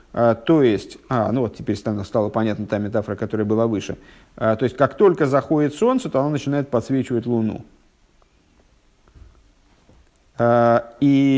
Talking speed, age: 130 wpm, 50-69